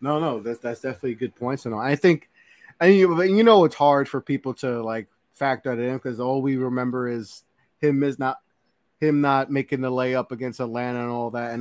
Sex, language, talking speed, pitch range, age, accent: male, English, 235 wpm, 120-155 Hz, 20-39, American